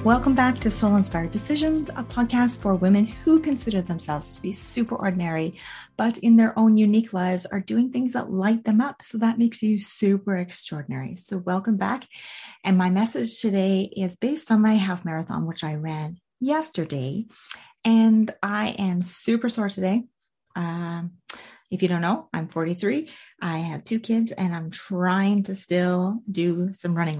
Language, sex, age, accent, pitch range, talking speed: English, female, 30-49, American, 170-220 Hz, 170 wpm